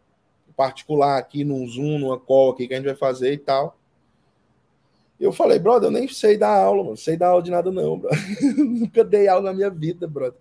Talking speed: 220 wpm